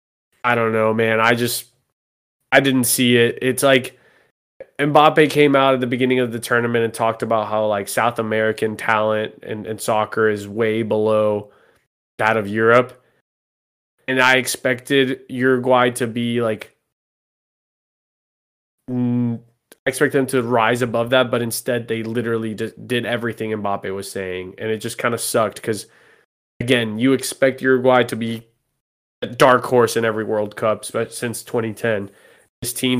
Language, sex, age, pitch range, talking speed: English, male, 20-39, 110-125 Hz, 155 wpm